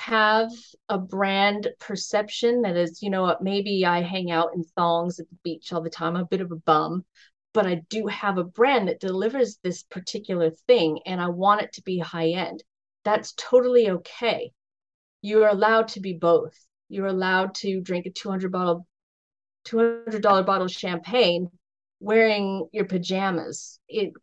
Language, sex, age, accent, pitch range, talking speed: English, female, 30-49, American, 180-225 Hz, 180 wpm